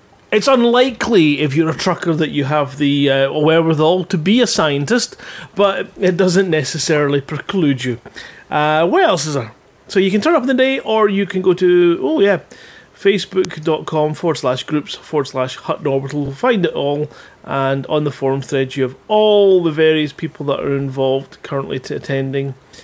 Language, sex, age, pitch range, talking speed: English, male, 30-49, 135-170 Hz, 185 wpm